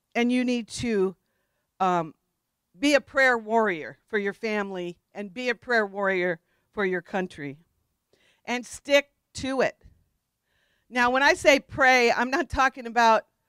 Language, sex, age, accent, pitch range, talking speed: English, female, 50-69, American, 215-255 Hz, 145 wpm